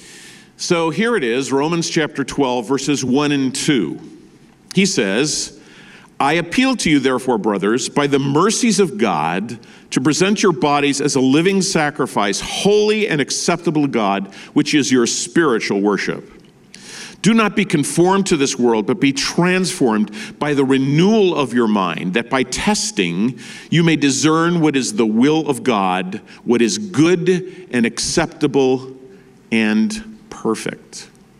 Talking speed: 145 wpm